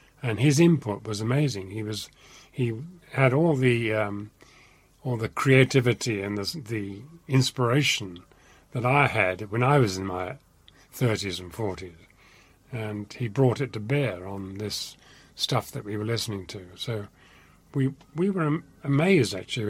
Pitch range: 105-135 Hz